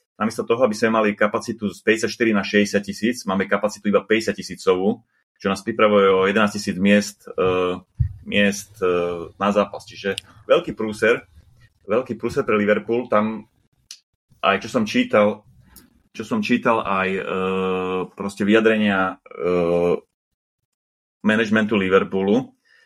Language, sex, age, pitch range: Slovak, male, 30-49, 100-110 Hz